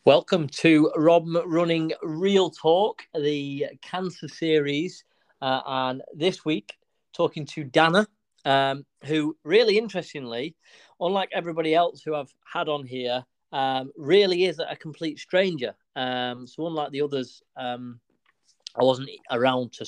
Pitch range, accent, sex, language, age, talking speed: 125-165 Hz, British, male, English, 30-49, 135 wpm